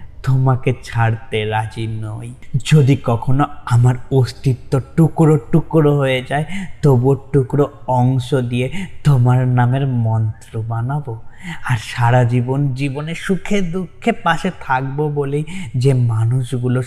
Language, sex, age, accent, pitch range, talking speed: Bengali, male, 20-39, native, 120-145 Hz, 110 wpm